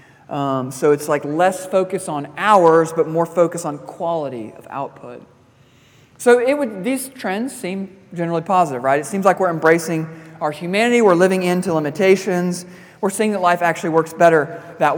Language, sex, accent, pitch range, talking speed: English, male, American, 135-185 Hz, 170 wpm